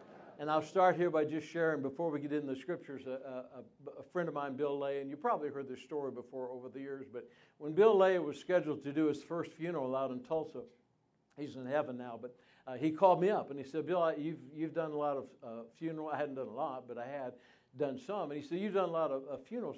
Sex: male